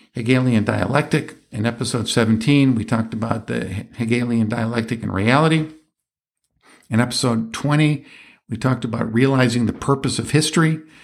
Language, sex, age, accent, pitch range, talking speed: English, male, 50-69, American, 115-135 Hz, 130 wpm